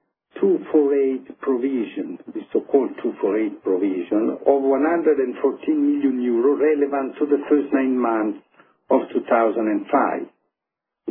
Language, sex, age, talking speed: Italian, male, 60-79, 95 wpm